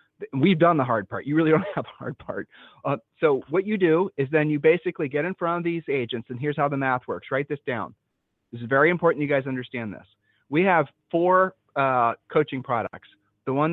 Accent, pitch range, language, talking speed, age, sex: American, 125-155 Hz, English, 225 wpm, 40-59, male